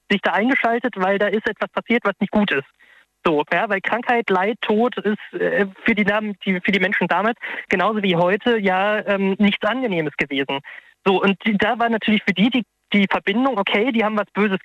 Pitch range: 190-225 Hz